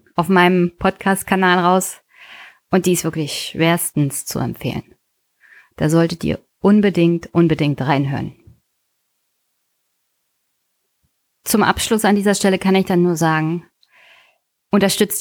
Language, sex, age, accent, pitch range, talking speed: German, female, 20-39, German, 170-210 Hz, 110 wpm